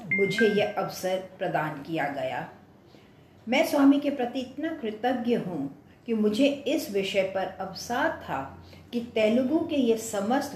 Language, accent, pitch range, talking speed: English, Indian, 185-245 Hz, 140 wpm